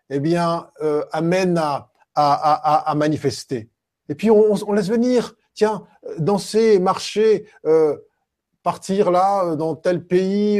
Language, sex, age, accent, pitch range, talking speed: French, male, 20-39, French, 150-205 Hz, 135 wpm